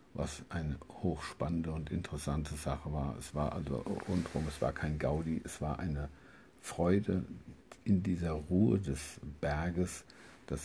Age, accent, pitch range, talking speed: 60-79, German, 70-85 Hz, 140 wpm